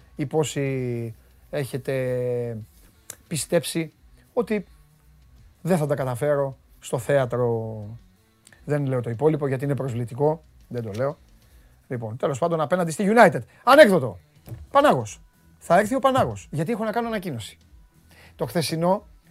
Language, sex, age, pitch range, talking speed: Greek, male, 30-49, 125-190 Hz, 120 wpm